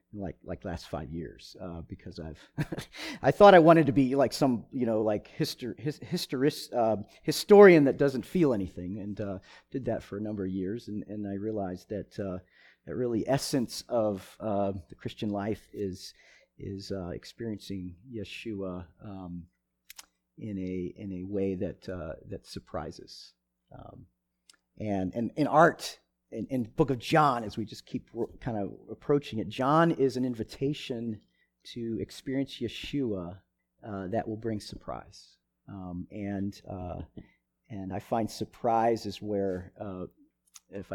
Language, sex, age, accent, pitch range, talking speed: English, male, 40-59, American, 95-135 Hz, 160 wpm